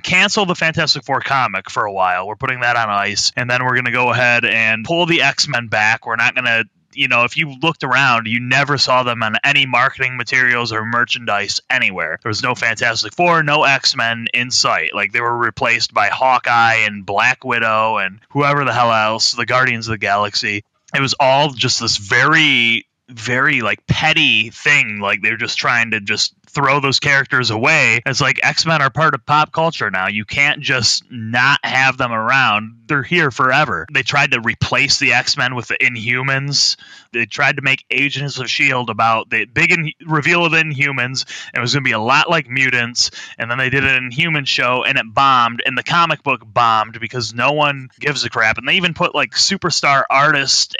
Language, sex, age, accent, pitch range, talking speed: English, male, 30-49, American, 115-145 Hz, 200 wpm